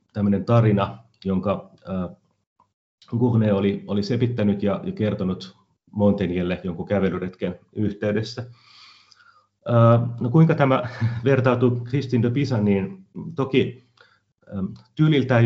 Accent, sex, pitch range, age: native, male, 100-120 Hz, 30-49